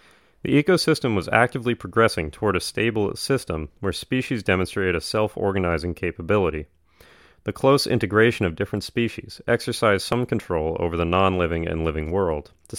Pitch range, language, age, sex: 85-105 Hz, English, 30-49, male